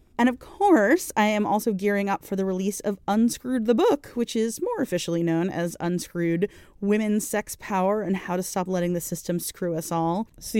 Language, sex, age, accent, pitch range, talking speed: English, female, 30-49, American, 175-225 Hz, 205 wpm